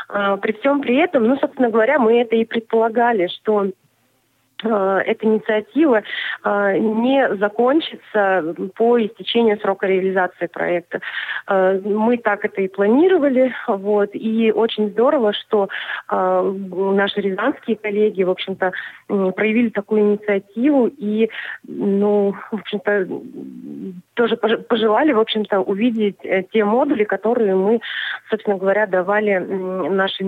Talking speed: 115 wpm